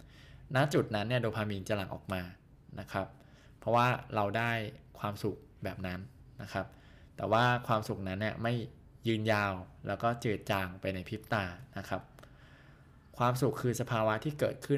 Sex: male